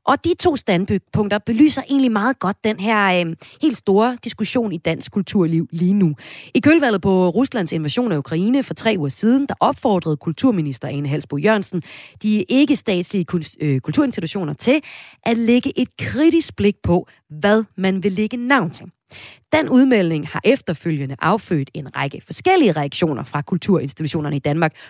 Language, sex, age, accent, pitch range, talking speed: Danish, female, 30-49, native, 160-230 Hz, 155 wpm